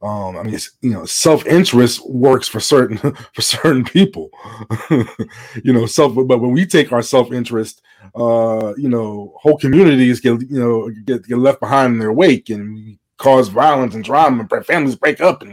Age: 20-39